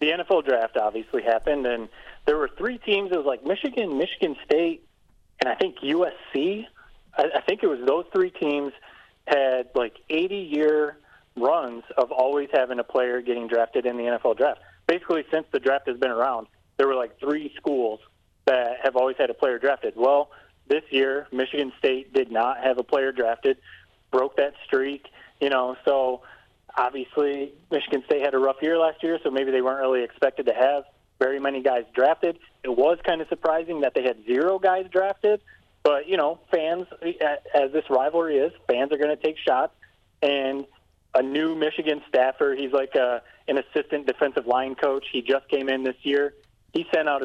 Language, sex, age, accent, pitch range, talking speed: English, male, 30-49, American, 130-160 Hz, 185 wpm